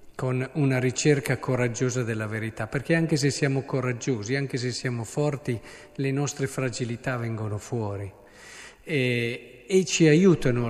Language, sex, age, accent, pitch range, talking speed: Italian, male, 50-69, native, 125-175 Hz, 135 wpm